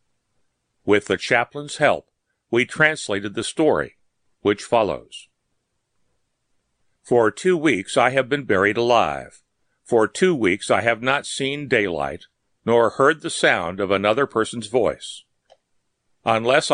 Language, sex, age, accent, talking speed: English, male, 60-79, American, 125 wpm